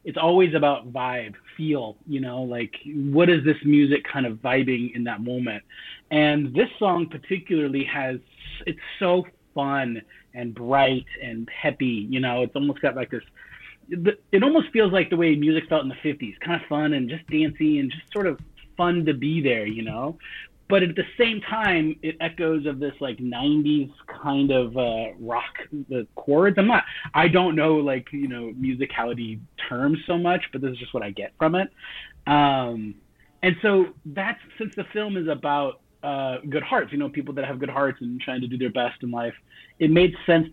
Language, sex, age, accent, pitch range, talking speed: English, male, 30-49, American, 130-165 Hz, 195 wpm